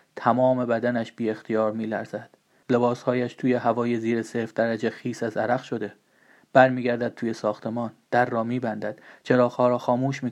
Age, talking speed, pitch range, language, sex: 30-49, 155 wpm, 115-130 Hz, Persian, male